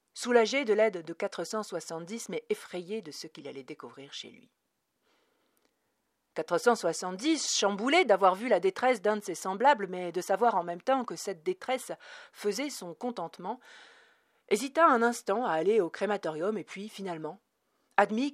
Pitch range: 180-255 Hz